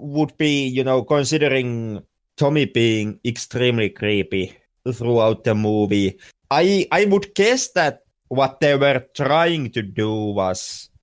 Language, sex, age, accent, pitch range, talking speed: English, male, 30-49, Finnish, 105-145 Hz, 130 wpm